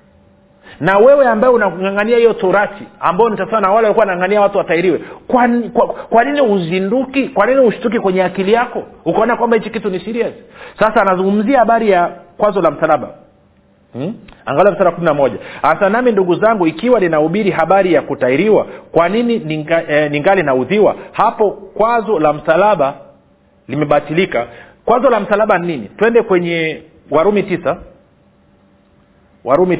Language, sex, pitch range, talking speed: Swahili, male, 150-215 Hz, 145 wpm